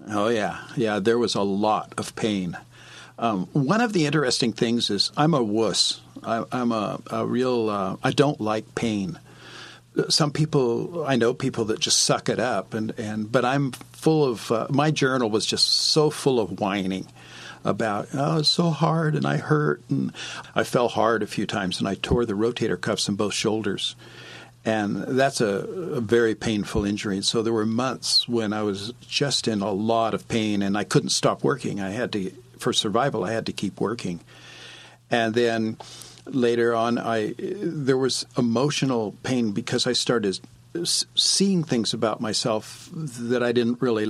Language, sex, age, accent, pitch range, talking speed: English, male, 50-69, American, 110-130 Hz, 185 wpm